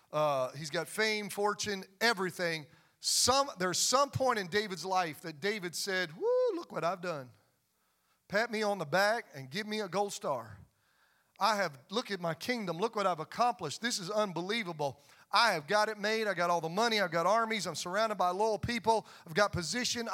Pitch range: 160-215 Hz